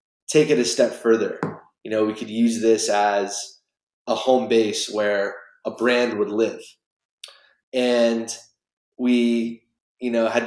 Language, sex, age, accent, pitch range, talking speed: English, male, 20-39, American, 105-115 Hz, 145 wpm